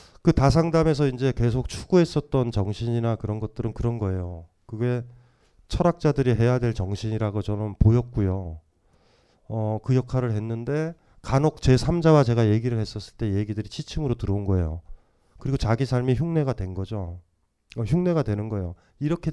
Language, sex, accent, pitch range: Korean, male, native, 95-140 Hz